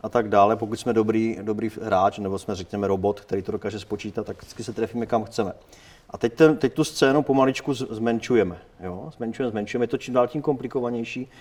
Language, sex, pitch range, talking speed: Czech, male, 110-135 Hz, 195 wpm